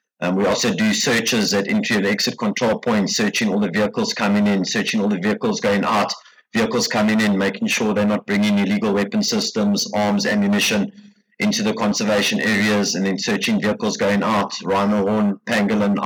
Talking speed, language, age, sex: 185 wpm, English, 30-49, male